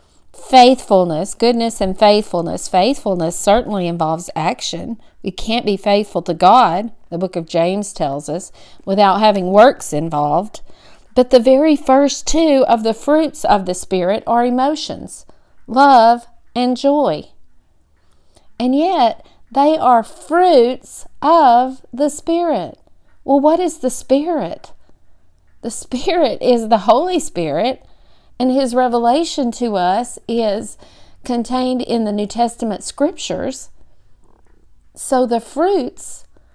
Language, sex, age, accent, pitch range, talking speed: English, female, 40-59, American, 205-275 Hz, 120 wpm